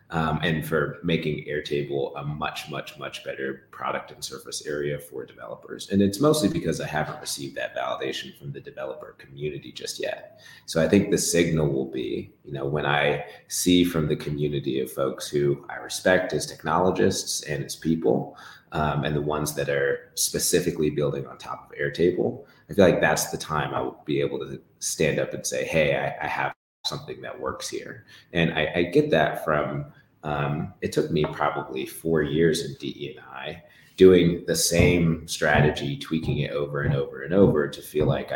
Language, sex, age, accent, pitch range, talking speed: English, male, 30-49, American, 70-80 Hz, 190 wpm